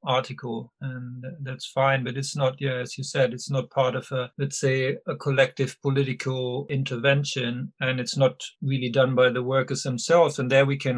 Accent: German